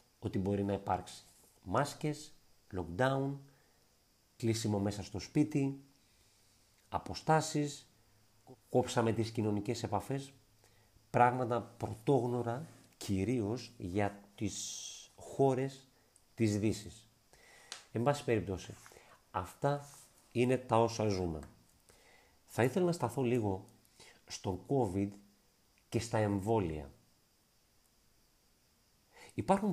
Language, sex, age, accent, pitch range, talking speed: Greek, male, 50-69, Spanish, 100-130 Hz, 85 wpm